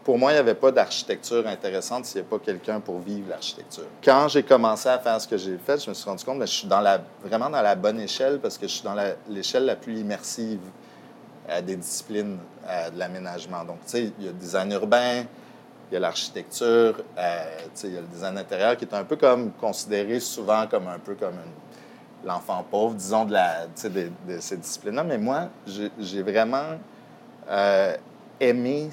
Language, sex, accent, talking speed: English, male, Canadian, 220 wpm